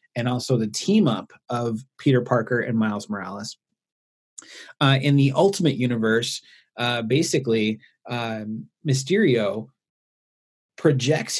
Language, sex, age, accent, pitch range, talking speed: English, male, 30-49, American, 115-145 Hz, 105 wpm